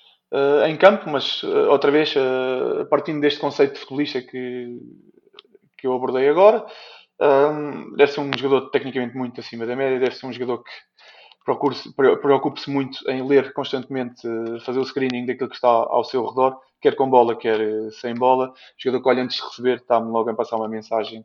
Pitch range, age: 115-145 Hz, 20-39